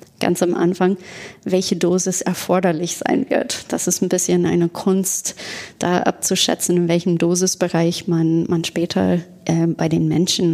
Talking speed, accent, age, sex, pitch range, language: 150 wpm, German, 30-49, female, 170-200 Hz, German